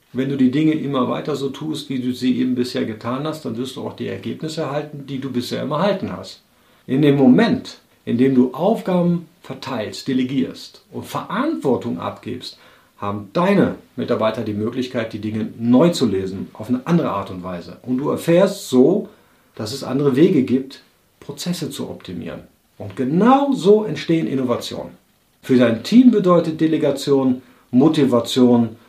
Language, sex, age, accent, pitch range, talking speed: German, male, 50-69, German, 115-145 Hz, 165 wpm